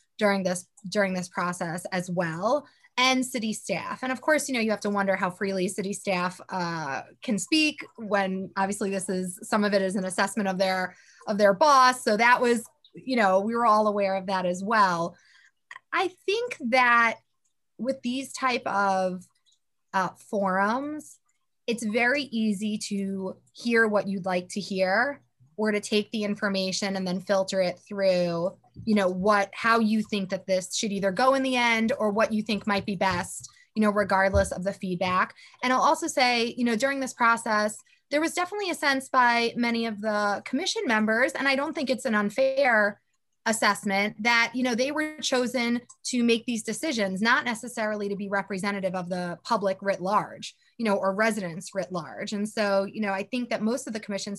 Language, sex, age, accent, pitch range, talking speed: English, female, 20-39, American, 195-245 Hz, 195 wpm